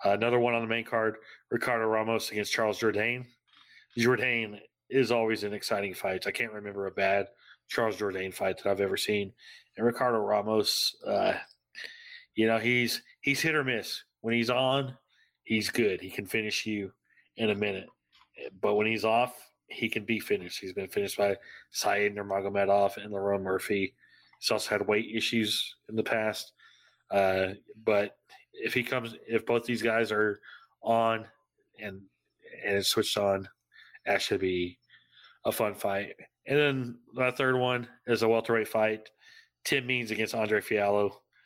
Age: 30-49